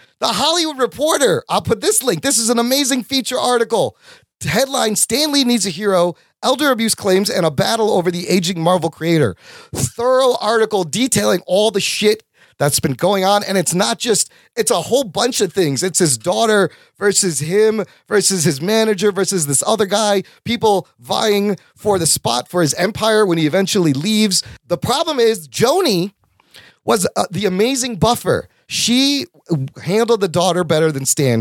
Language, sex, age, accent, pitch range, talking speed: English, male, 30-49, American, 170-225 Hz, 170 wpm